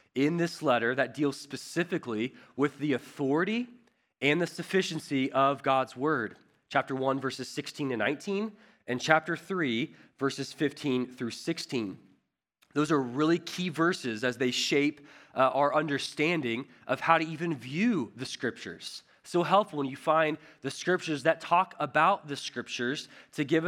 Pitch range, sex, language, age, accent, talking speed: 140-180 Hz, male, English, 20-39, American, 150 wpm